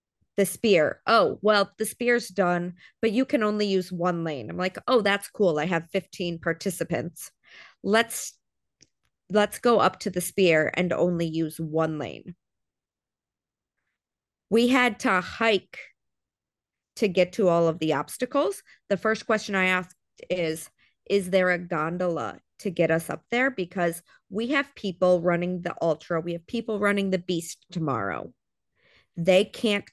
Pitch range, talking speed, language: 170-210 Hz, 155 wpm, English